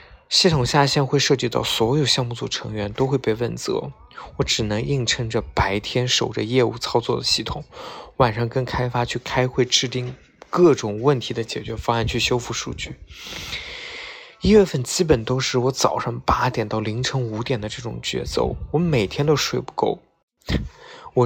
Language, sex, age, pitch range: Chinese, male, 20-39, 115-140 Hz